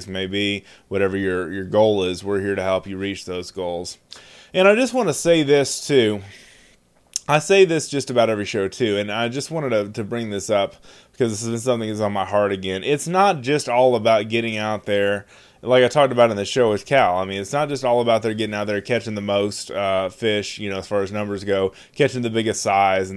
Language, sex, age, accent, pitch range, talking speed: English, male, 20-39, American, 100-125 Hz, 240 wpm